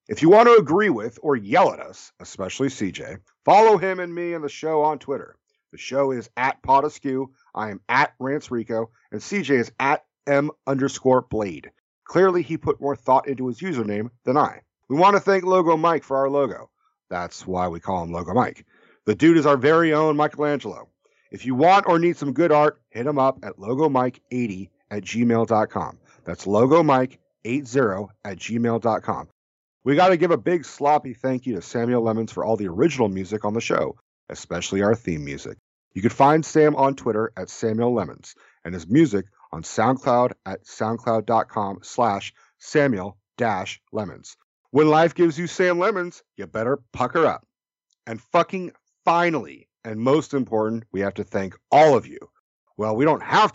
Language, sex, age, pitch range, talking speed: English, male, 40-59, 110-155 Hz, 175 wpm